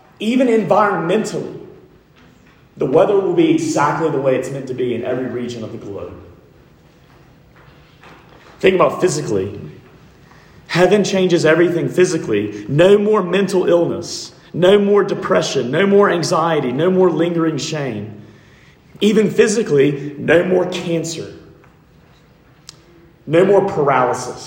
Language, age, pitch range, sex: English, 30-49, 130-170 Hz, male